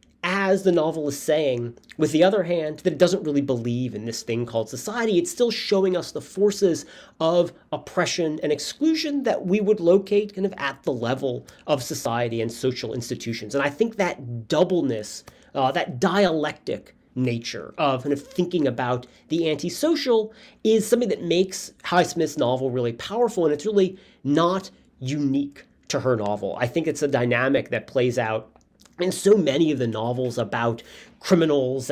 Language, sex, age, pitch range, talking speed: English, male, 40-59, 125-185 Hz, 170 wpm